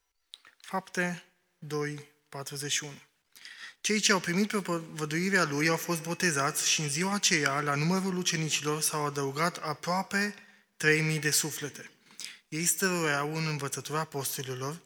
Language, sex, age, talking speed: Romanian, male, 20-39, 115 wpm